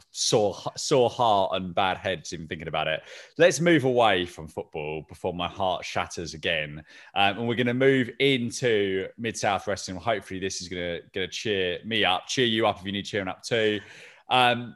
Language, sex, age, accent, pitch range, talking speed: English, male, 20-39, British, 95-135 Hz, 190 wpm